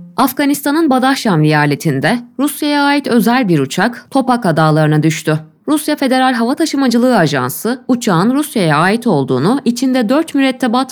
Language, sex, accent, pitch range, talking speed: Turkish, female, native, 170-265 Hz, 125 wpm